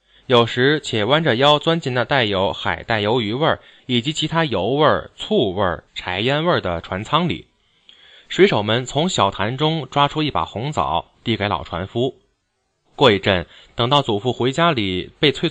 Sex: male